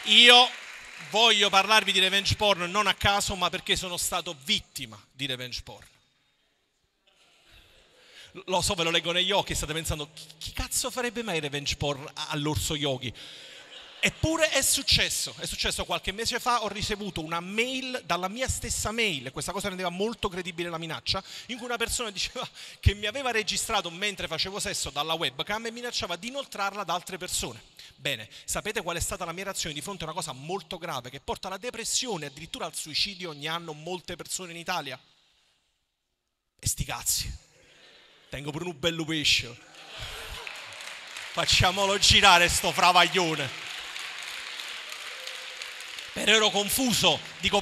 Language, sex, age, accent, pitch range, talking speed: Italian, male, 40-59, native, 170-245 Hz, 155 wpm